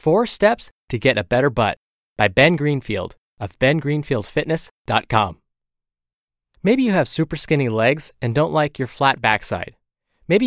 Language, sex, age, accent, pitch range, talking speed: English, male, 20-39, American, 110-150 Hz, 145 wpm